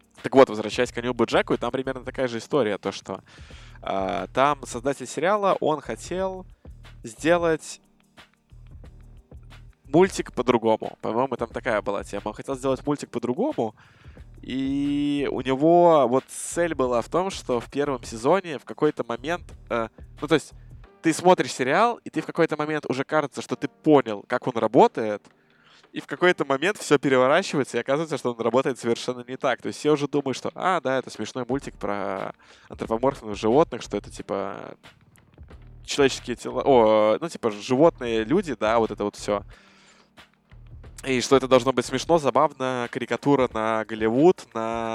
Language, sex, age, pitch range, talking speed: Russian, male, 20-39, 115-145 Hz, 160 wpm